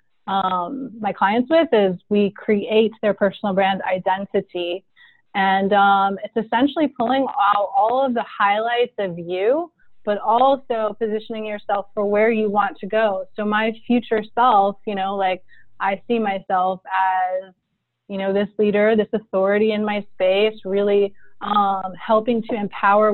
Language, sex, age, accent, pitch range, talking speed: English, female, 20-39, American, 195-235 Hz, 150 wpm